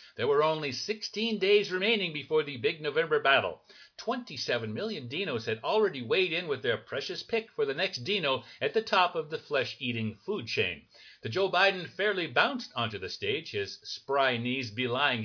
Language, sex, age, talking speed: English, male, 60-79, 180 wpm